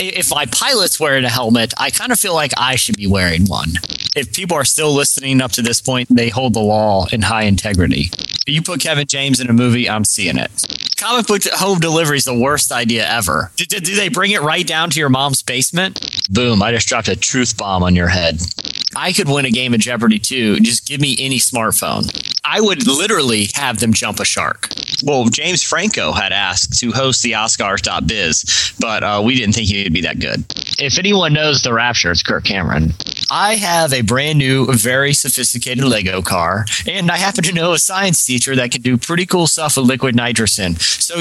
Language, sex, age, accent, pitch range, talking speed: English, male, 30-49, American, 110-145 Hz, 210 wpm